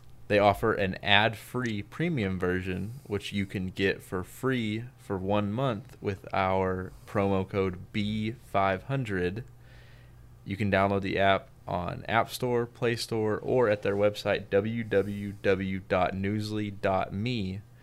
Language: English